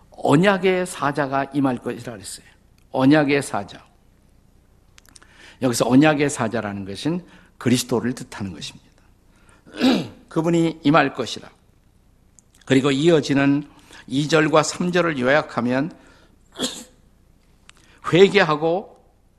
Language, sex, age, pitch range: Korean, male, 50-69, 105-150 Hz